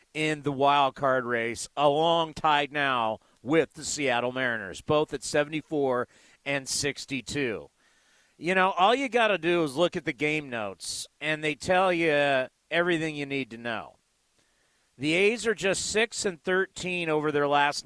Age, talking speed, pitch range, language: 40-59, 165 wpm, 140-180 Hz, English